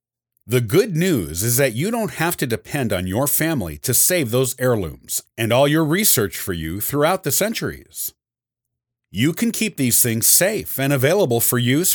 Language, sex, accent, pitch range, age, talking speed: English, male, American, 115-155 Hz, 50-69, 180 wpm